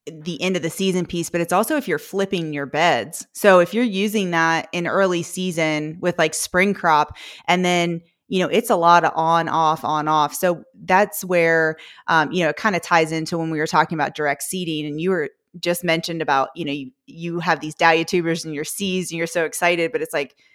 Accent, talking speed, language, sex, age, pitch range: American, 235 wpm, English, female, 20-39, 155-175 Hz